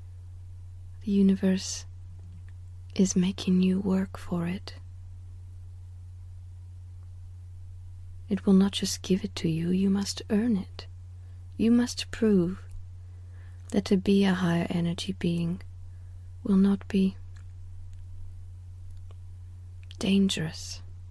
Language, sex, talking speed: English, female, 95 wpm